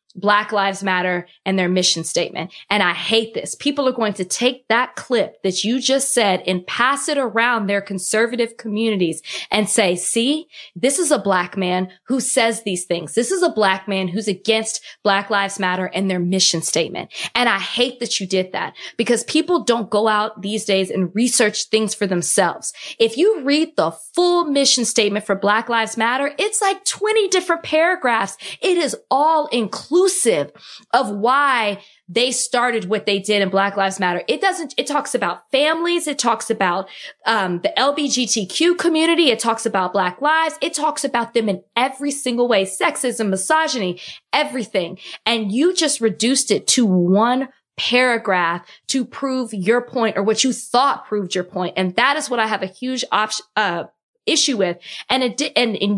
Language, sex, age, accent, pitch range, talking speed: English, female, 20-39, American, 195-270 Hz, 180 wpm